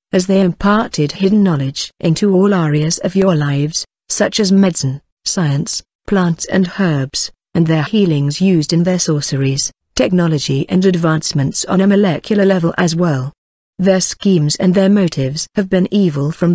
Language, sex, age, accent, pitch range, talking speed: English, female, 50-69, British, 160-195 Hz, 155 wpm